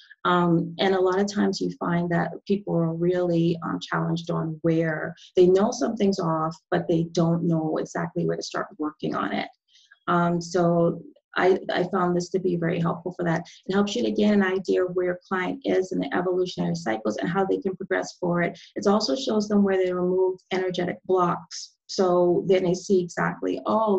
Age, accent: 30-49, American